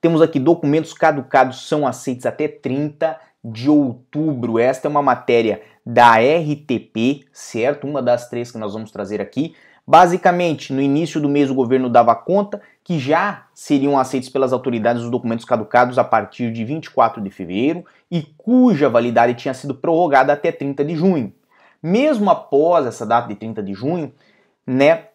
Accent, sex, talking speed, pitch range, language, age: Brazilian, male, 160 wpm, 120-160 Hz, Portuguese, 20-39